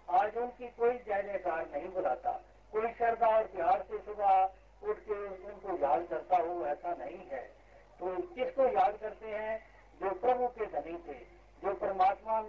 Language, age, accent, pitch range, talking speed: Hindi, 50-69, native, 180-215 Hz, 165 wpm